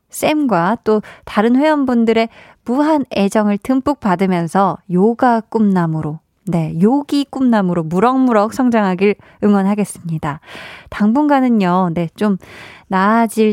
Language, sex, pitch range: Korean, female, 185-260 Hz